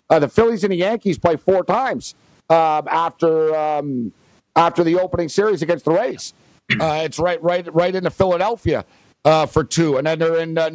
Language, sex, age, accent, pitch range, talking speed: English, male, 60-79, American, 165-215 Hz, 190 wpm